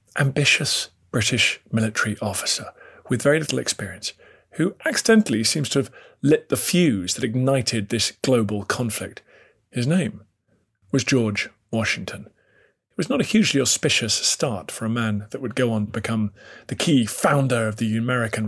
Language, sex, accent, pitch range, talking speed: English, male, British, 110-140 Hz, 155 wpm